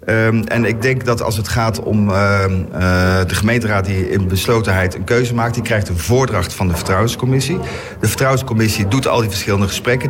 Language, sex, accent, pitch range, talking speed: Dutch, male, Dutch, 95-120 Hz, 195 wpm